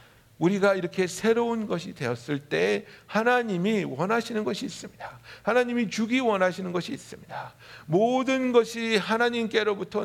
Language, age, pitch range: Korean, 60-79, 180-240 Hz